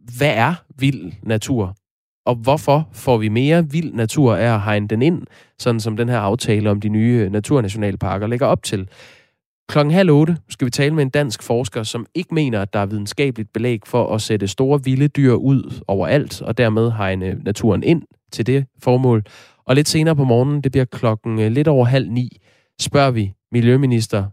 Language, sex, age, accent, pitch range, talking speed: Danish, male, 20-39, native, 110-135 Hz, 185 wpm